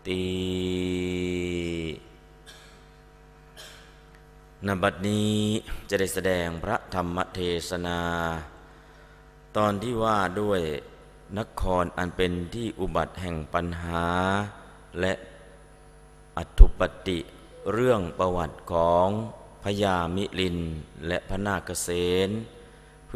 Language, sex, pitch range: Thai, male, 85-95 Hz